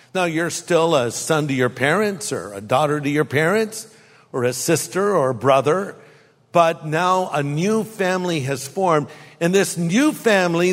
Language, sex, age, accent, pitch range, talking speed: English, male, 50-69, American, 145-195 Hz, 175 wpm